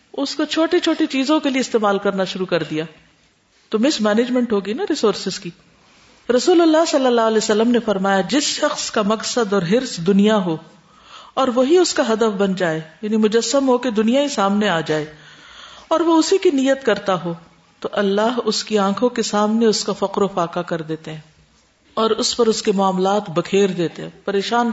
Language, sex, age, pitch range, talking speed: Urdu, female, 50-69, 190-260 Hz, 205 wpm